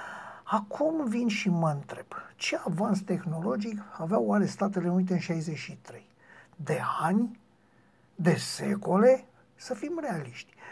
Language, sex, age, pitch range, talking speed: Romanian, male, 60-79, 175-220 Hz, 120 wpm